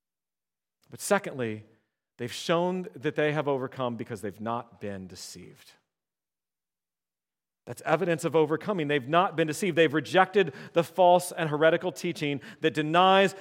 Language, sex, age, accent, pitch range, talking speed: English, male, 40-59, American, 135-195 Hz, 135 wpm